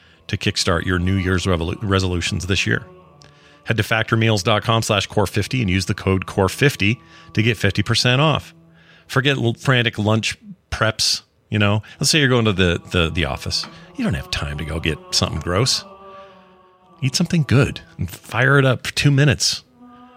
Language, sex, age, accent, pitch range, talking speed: English, male, 40-59, American, 95-140 Hz, 165 wpm